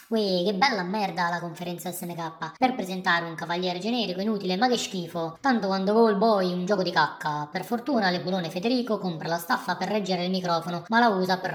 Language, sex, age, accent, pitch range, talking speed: Italian, male, 20-39, native, 170-205 Hz, 205 wpm